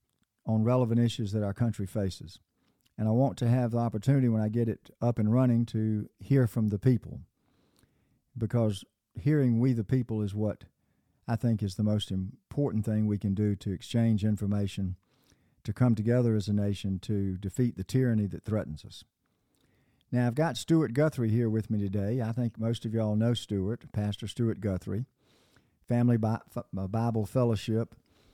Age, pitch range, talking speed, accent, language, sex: 50-69, 105-125 Hz, 175 wpm, American, English, male